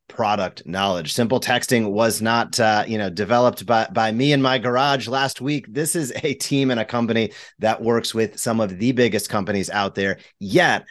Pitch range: 100-125 Hz